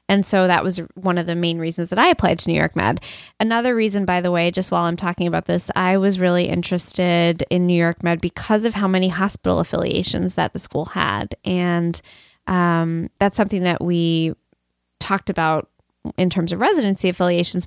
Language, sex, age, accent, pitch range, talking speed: English, female, 20-39, American, 175-215 Hz, 195 wpm